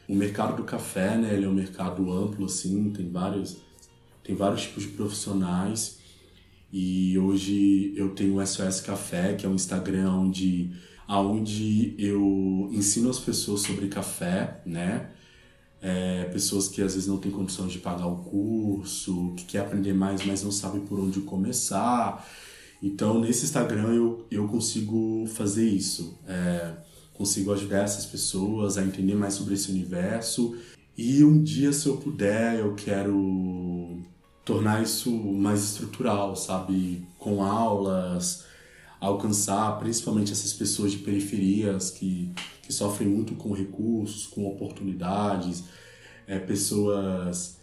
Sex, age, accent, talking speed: male, 20-39, Brazilian, 140 wpm